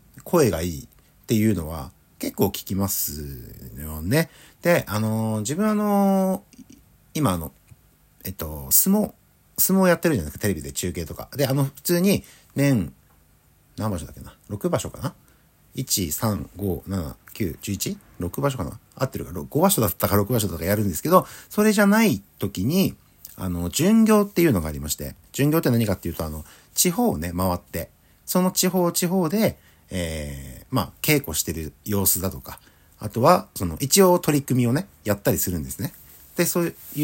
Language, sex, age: Japanese, male, 50-69